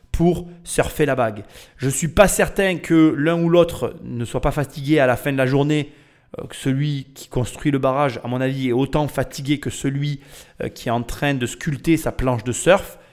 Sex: male